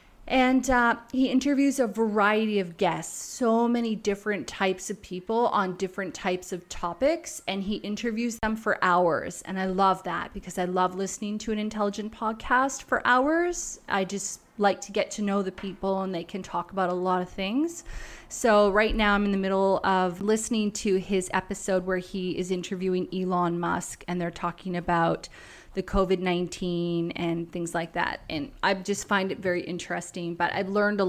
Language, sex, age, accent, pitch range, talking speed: English, female, 20-39, American, 180-210 Hz, 185 wpm